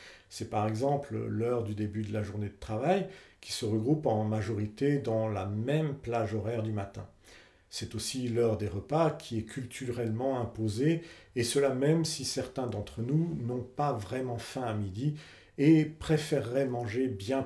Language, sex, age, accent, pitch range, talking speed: French, male, 50-69, French, 110-155 Hz, 170 wpm